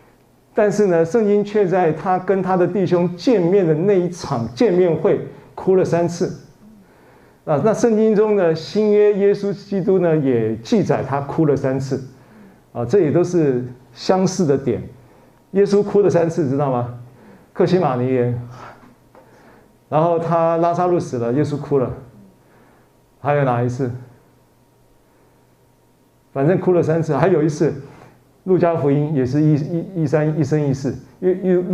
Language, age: Chinese, 50-69